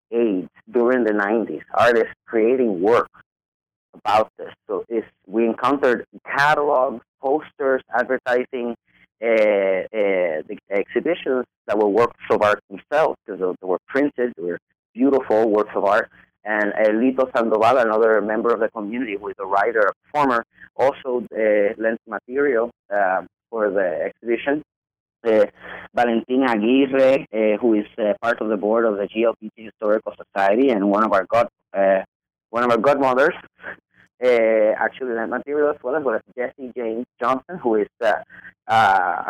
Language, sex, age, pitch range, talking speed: English, male, 30-49, 110-130 Hz, 155 wpm